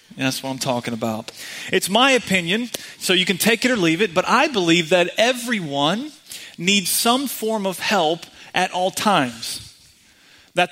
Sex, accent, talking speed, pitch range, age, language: male, American, 170 wpm, 155-210 Hz, 30-49, English